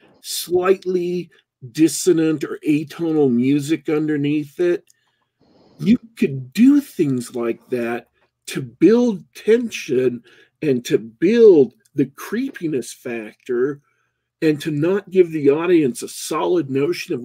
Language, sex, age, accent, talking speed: English, male, 50-69, American, 110 wpm